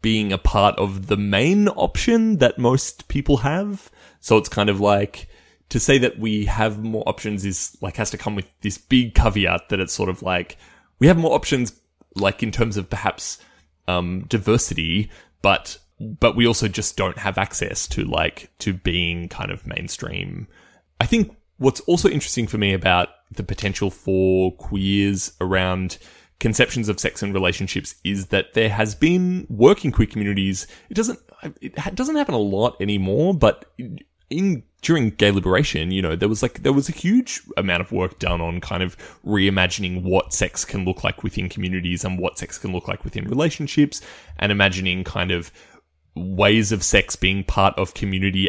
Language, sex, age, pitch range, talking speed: English, male, 20-39, 90-120 Hz, 180 wpm